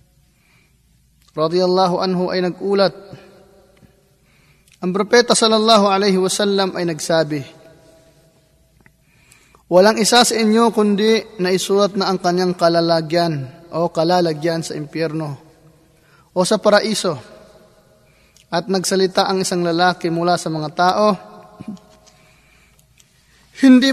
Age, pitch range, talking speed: 20-39, 160-195 Hz, 95 wpm